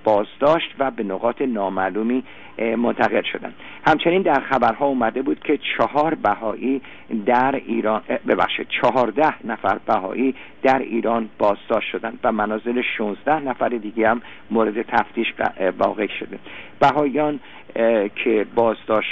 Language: English